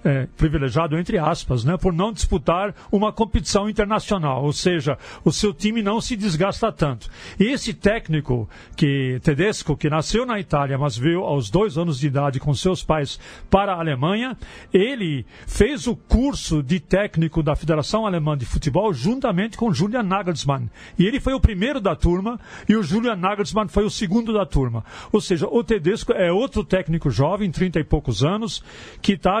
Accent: Brazilian